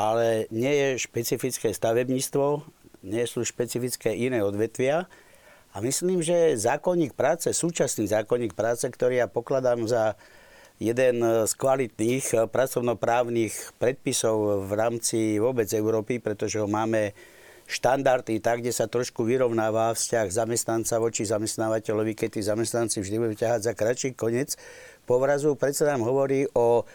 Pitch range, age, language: 110-135 Hz, 60-79, Slovak